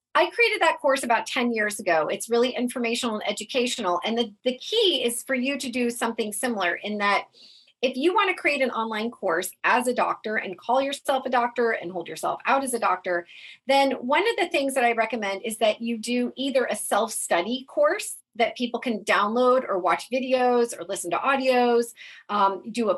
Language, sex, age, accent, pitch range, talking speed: English, female, 40-59, American, 220-275 Hz, 205 wpm